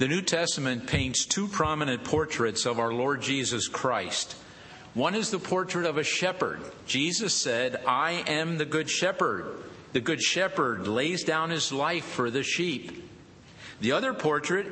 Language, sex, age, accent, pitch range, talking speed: English, male, 50-69, American, 145-185 Hz, 160 wpm